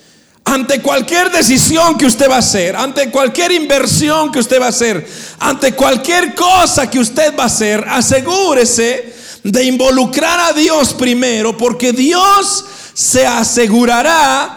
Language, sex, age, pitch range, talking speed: Spanish, male, 50-69, 235-300 Hz, 140 wpm